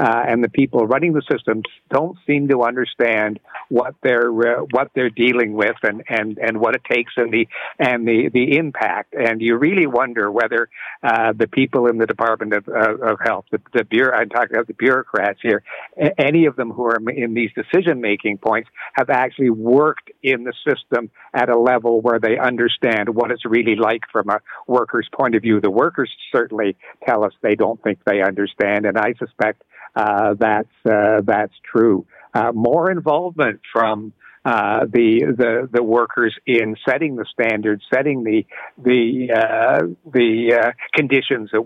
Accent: American